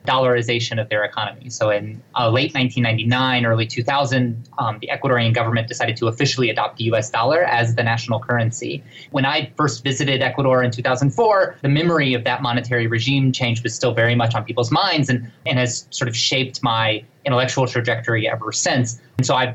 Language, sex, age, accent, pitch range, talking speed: English, male, 20-39, American, 120-140 Hz, 185 wpm